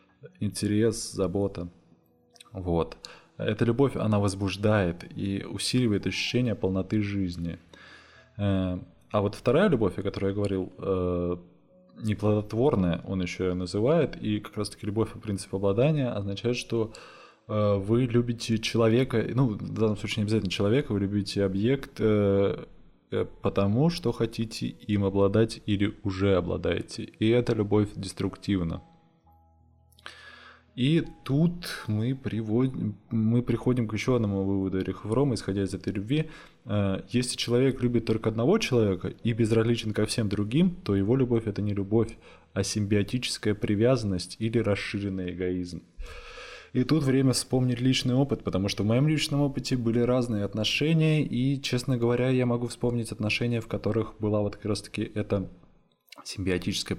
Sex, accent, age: male, native, 20-39